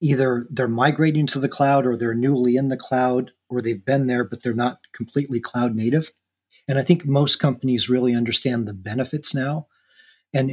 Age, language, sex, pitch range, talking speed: 40-59, English, male, 120-140 Hz, 190 wpm